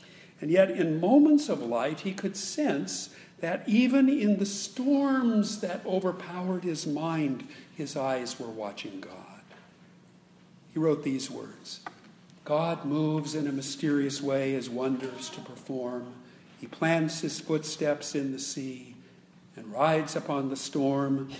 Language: English